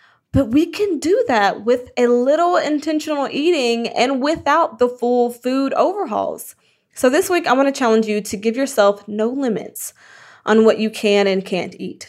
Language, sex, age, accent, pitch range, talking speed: English, female, 20-39, American, 220-300 Hz, 180 wpm